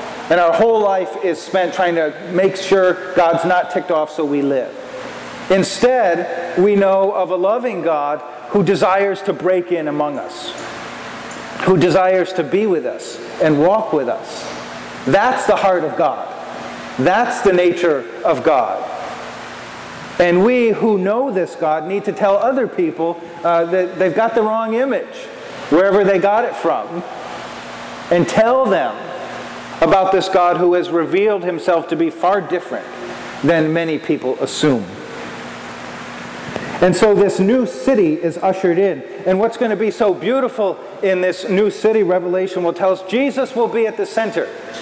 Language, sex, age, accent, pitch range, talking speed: English, male, 40-59, American, 175-210 Hz, 160 wpm